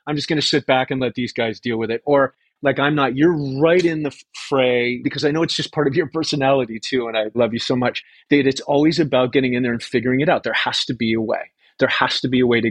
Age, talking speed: 30-49, 295 wpm